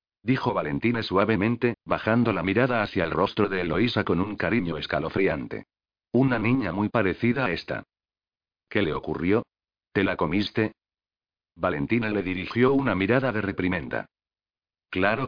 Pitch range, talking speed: 95-120 Hz, 140 wpm